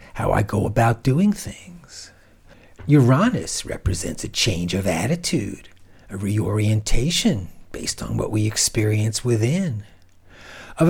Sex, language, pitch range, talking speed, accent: male, English, 95-130 Hz, 115 wpm, American